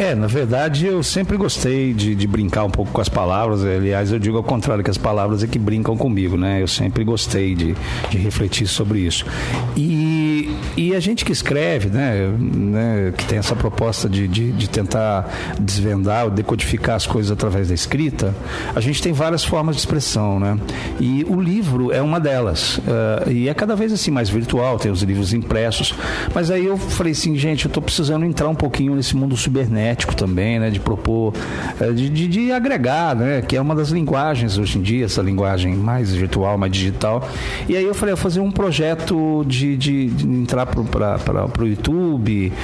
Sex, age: male, 50-69